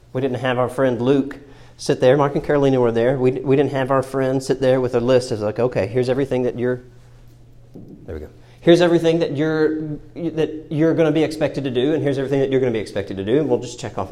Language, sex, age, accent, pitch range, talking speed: English, male, 40-59, American, 125-190 Hz, 265 wpm